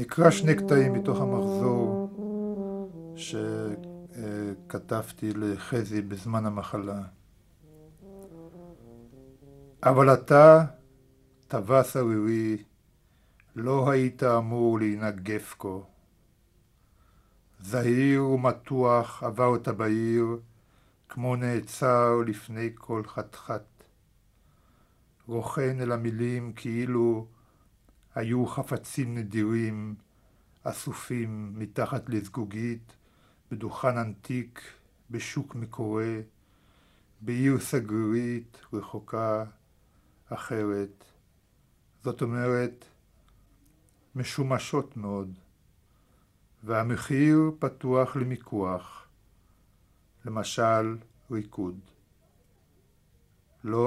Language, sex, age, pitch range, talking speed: Hebrew, male, 50-69, 105-130 Hz, 60 wpm